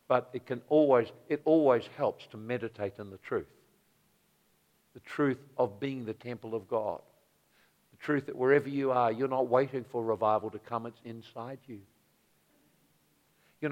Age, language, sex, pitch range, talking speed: 60-79, English, male, 115-140 Hz, 160 wpm